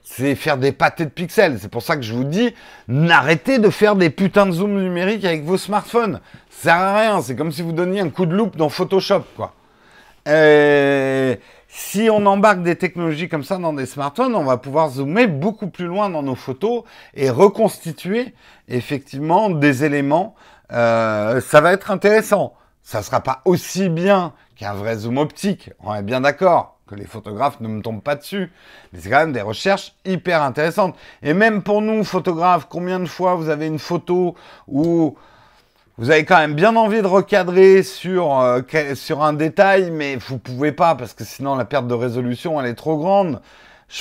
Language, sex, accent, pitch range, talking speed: French, male, French, 140-195 Hz, 195 wpm